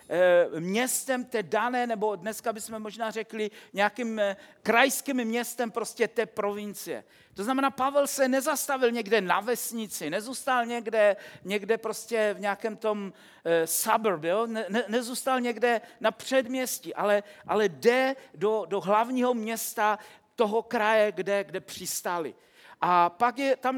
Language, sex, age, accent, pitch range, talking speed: Czech, male, 50-69, native, 210-255 Hz, 130 wpm